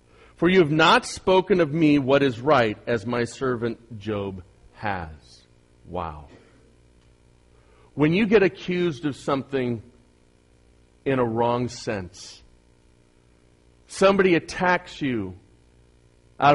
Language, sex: English, male